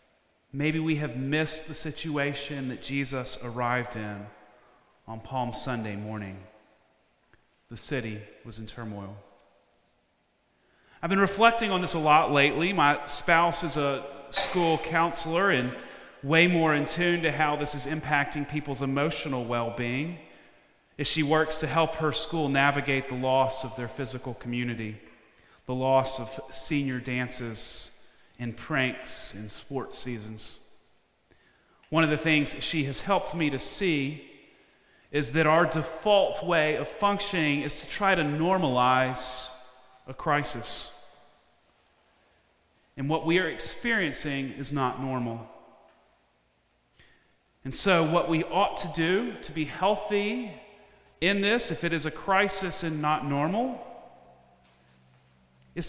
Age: 30-49